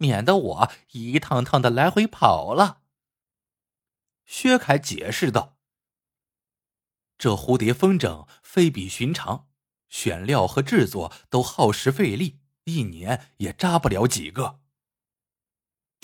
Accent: native